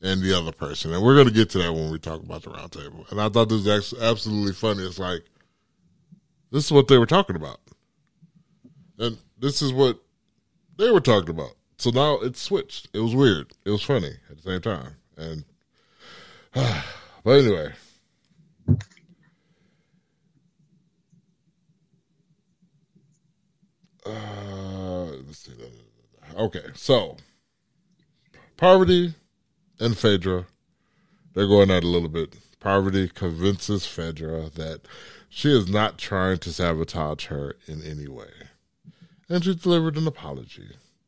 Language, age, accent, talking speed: English, 20-39, American, 135 wpm